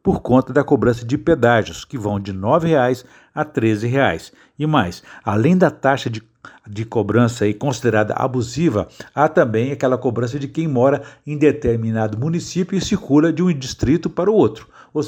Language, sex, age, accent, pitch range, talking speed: Portuguese, male, 60-79, Brazilian, 115-150 Hz, 170 wpm